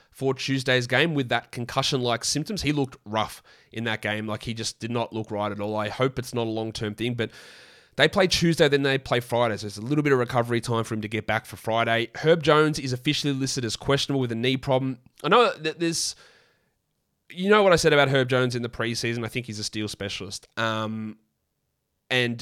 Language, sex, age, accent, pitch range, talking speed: English, male, 20-39, Australian, 115-150 Hz, 230 wpm